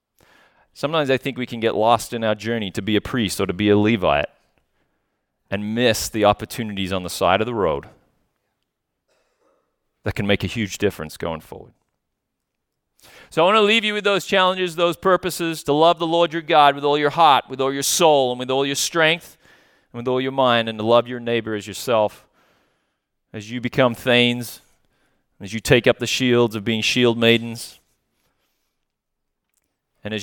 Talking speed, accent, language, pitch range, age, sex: 190 wpm, American, English, 105-135 Hz, 30-49, male